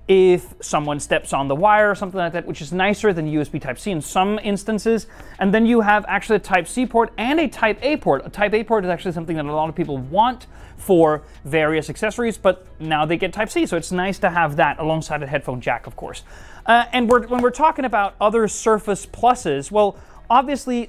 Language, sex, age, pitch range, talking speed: English, male, 30-49, 165-225 Hz, 215 wpm